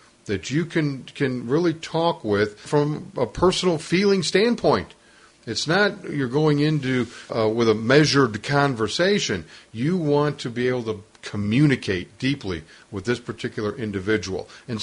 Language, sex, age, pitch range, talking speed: English, male, 50-69, 110-145 Hz, 140 wpm